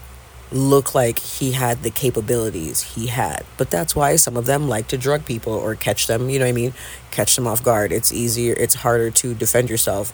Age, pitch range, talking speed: 30-49, 115-130 Hz, 220 wpm